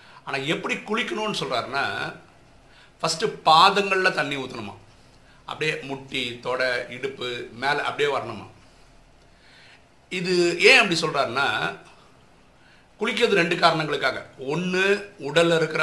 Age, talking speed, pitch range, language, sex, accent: 50-69, 95 wpm, 140-185 Hz, Tamil, male, native